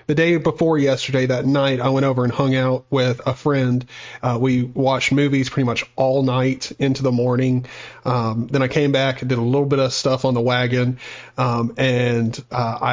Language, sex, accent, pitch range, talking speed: English, male, American, 130-150 Hz, 205 wpm